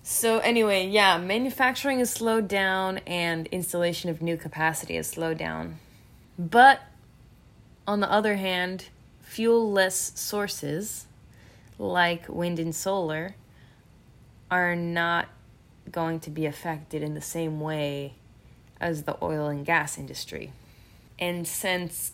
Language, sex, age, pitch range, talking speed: English, female, 20-39, 150-180 Hz, 120 wpm